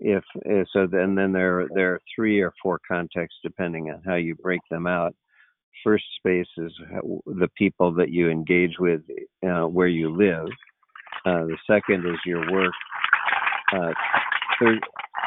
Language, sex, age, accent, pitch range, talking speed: English, male, 50-69, American, 85-90 Hz, 165 wpm